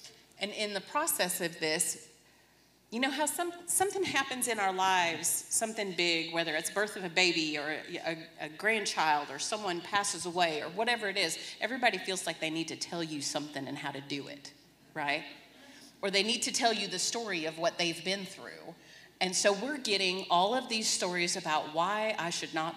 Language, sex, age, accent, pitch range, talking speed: English, female, 40-59, American, 170-235 Hz, 200 wpm